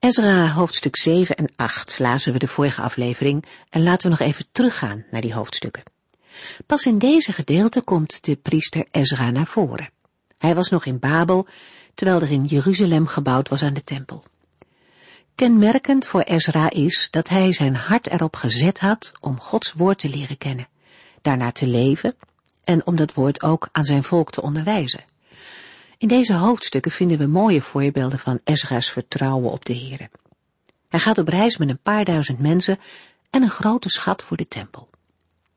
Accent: Dutch